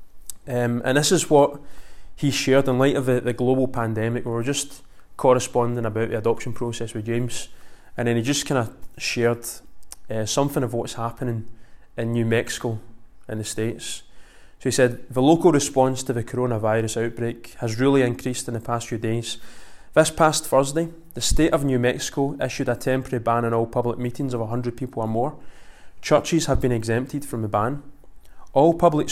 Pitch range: 115-140 Hz